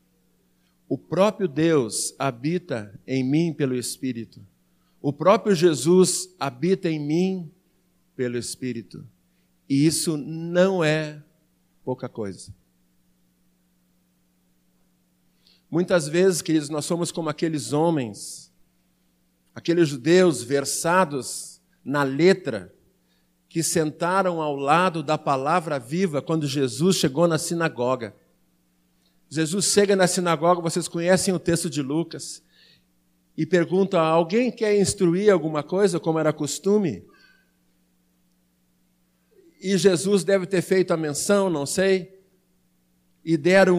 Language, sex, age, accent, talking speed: Portuguese, male, 50-69, Brazilian, 105 wpm